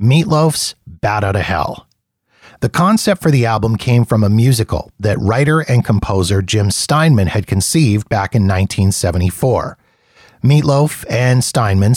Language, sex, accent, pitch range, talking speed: English, male, American, 100-135 Hz, 140 wpm